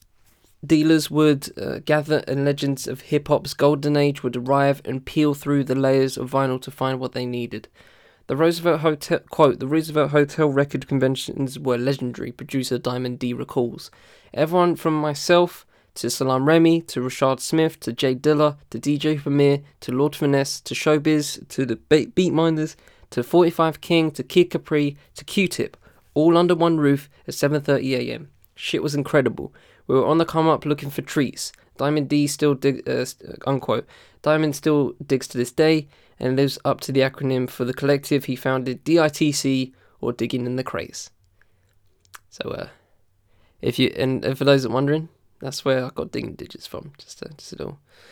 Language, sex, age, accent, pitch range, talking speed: English, male, 20-39, British, 130-155 Hz, 175 wpm